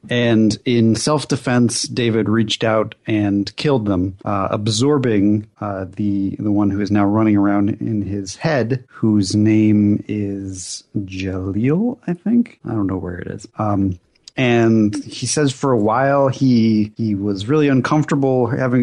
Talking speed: 155 wpm